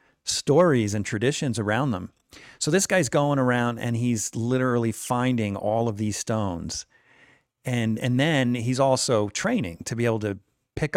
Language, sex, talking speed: English, male, 160 wpm